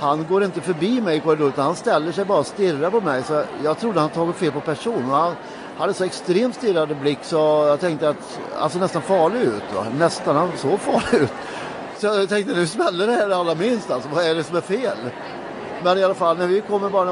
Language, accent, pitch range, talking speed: Swedish, native, 145-180 Hz, 230 wpm